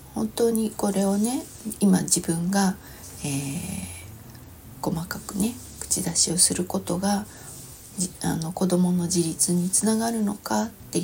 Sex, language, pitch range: female, Japanese, 145-205 Hz